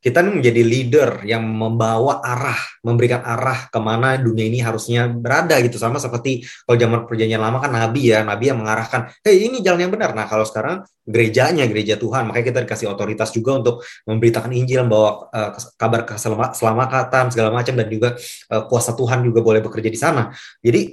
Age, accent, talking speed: 20-39, native, 180 wpm